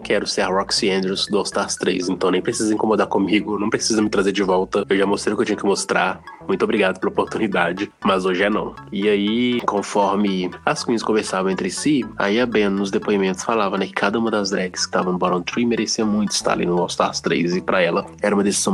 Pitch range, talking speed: 95-110 Hz, 245 wpm